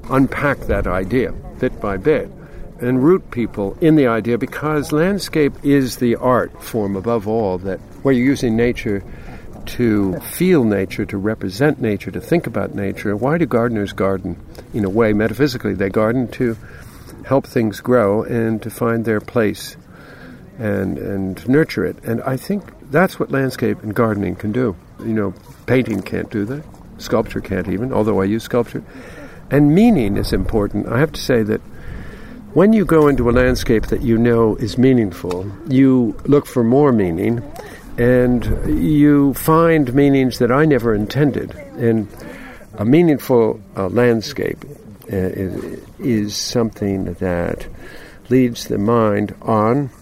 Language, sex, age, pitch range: English, male, 60-79, 105-130 Hz